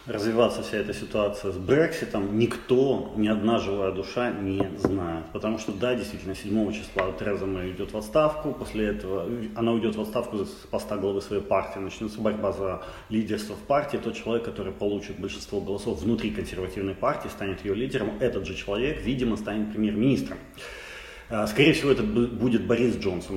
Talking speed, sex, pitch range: 165 wpm, male, 100-120 Hz